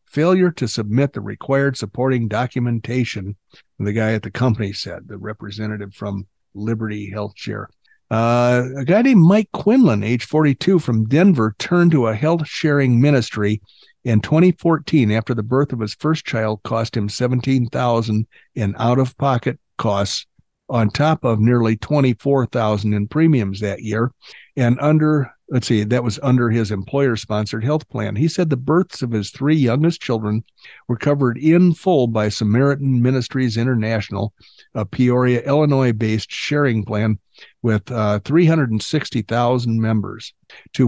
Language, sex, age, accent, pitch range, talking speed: English, male, 60-79, American, 110-145 Hz, 145 wpm